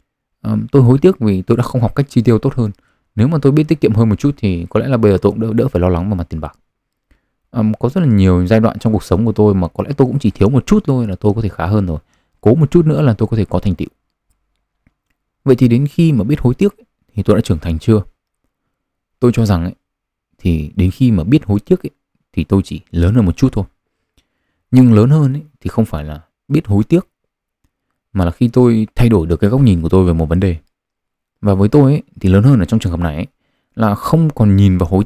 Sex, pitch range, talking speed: male, 90-125 Hz, 265 wpm